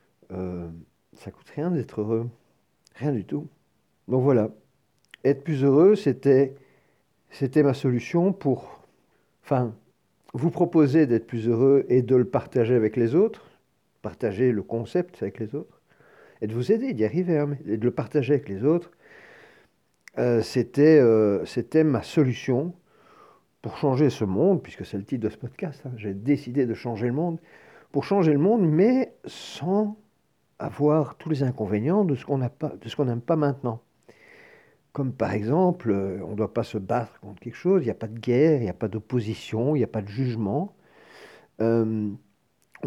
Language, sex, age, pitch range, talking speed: French, male, 50-69, 115-155 Hz, 170 wpm